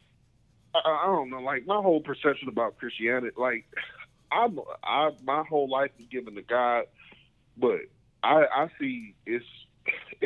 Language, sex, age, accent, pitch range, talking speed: English, male, 30-49, American, 125-160 Hz, 145 wpm